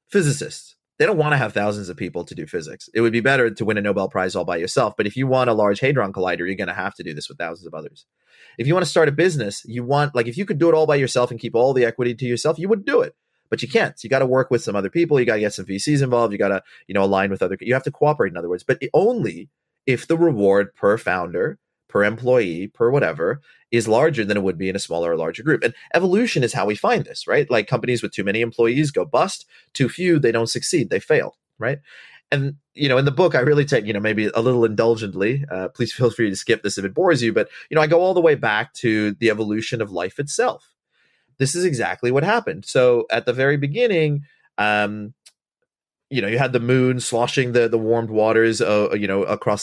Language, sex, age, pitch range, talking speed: English, male, 30-49, 105-145 Hz, 265 wpm